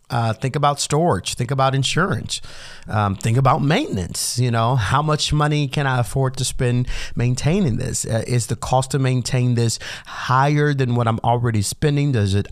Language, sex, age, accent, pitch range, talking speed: English, male, 30-49, American, 105-140 Hz, 180 wpm